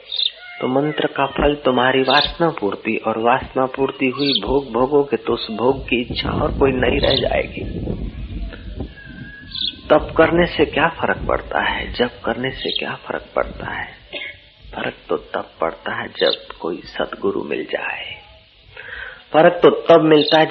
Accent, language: native, Hindi